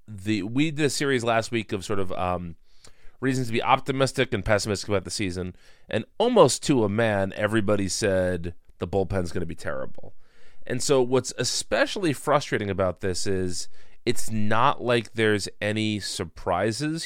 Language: English